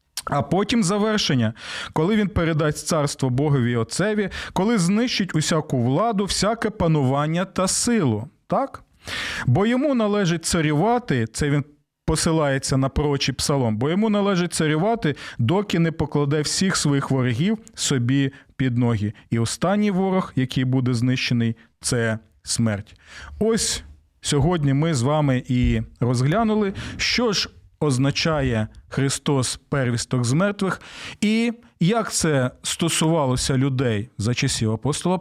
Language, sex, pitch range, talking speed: Ukrainian, male, 120-175 Hz, 120 wpm